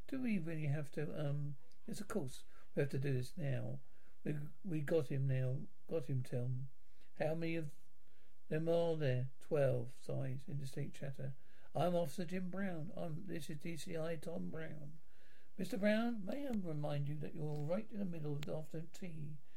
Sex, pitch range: male, 140-180 Hz